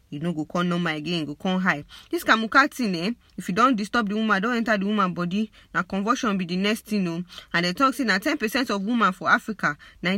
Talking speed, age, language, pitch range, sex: 235 wpm, 20-39, English, 185-235 Hz, female